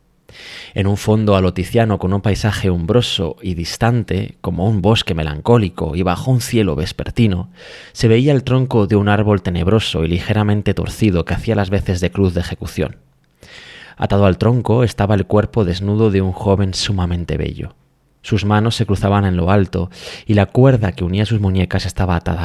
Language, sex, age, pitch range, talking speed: Spanish, male, 20-39, 90-110 Hz, 175 wpm